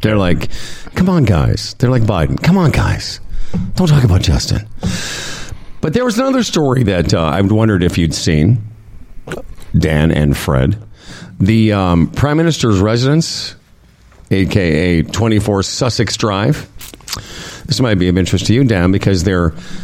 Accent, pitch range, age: American, 95-130 Hz, 50-69